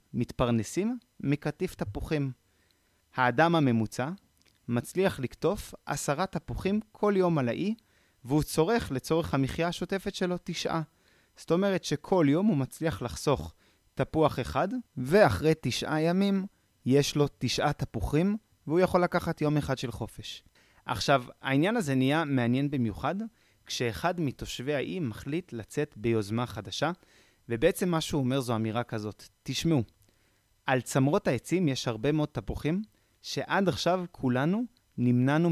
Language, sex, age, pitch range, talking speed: Hebrew, male, 30-49, 120-170 Hz, 125 wpm